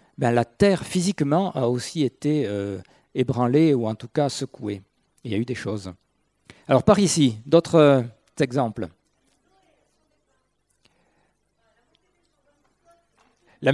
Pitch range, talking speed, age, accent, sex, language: 125-180 Hz, 120 wpm, 50-69, French, male, French